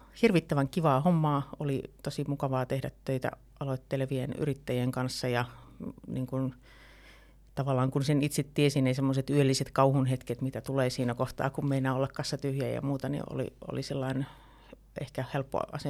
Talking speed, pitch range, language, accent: 150 wpm, 130-145 Hz, Finnish, native